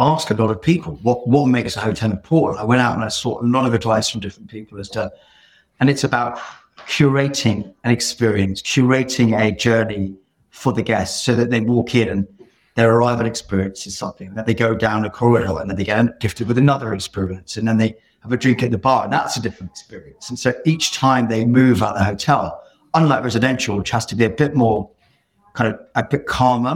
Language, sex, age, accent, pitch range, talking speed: English, male, 50-69, British, 105-125 Hz, 225 wpm